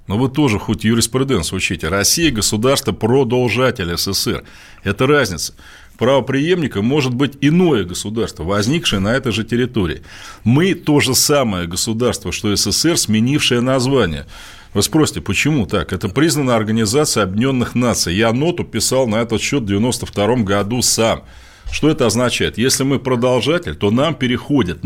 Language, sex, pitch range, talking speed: Russian, male, 105-145 Hz, 145 wpm